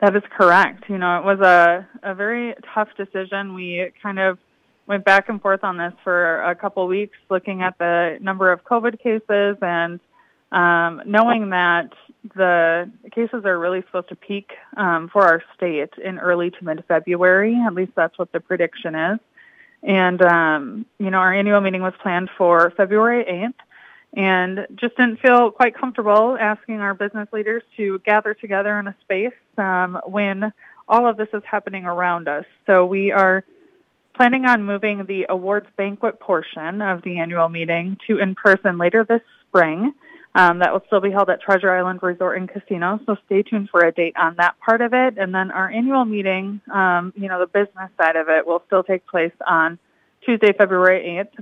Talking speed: 185 wpm